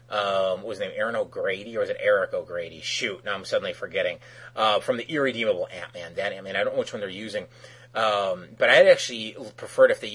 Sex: male